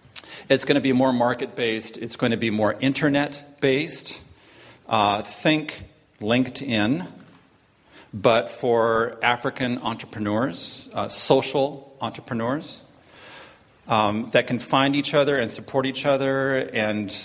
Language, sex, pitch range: English, male, 115-135 Hz